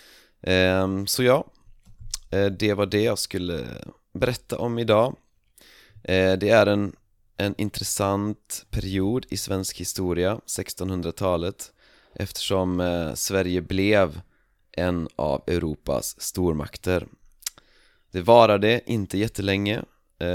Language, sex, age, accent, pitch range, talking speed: Swedish, male, 30-49, native, 80-100 Hz, 90 wpm